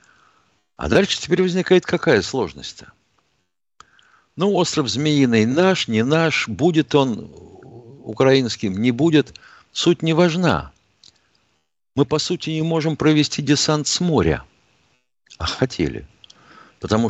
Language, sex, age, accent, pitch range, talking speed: Russian, male, 60-79, native, 95-140 Hz, 110 wpm